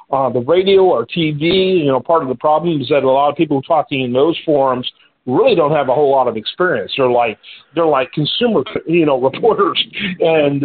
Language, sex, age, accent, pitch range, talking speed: English, male, 50-69, American, 140-175 Hz, 215 wpm